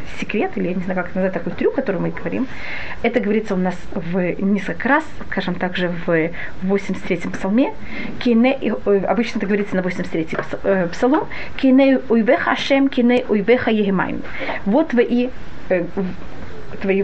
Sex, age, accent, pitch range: female, 30-49, native, 210-270 Hz